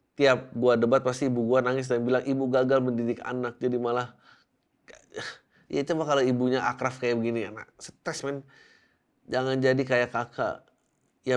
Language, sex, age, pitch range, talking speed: Indonesian, male, 20-39, 115-135 Hz, 160 wpm